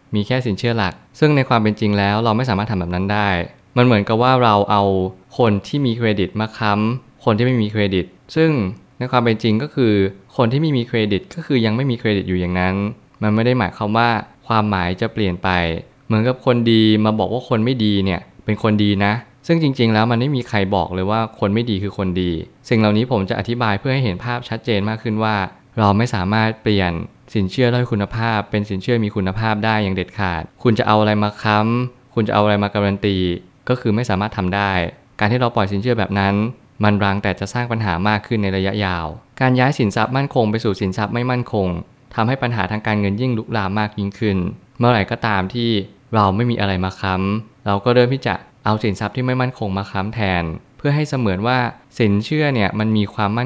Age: 20-39